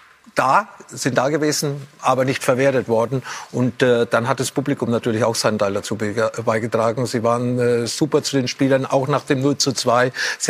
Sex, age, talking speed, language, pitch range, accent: male, 40-59, 195 wpm, German, 125-145 Hz, German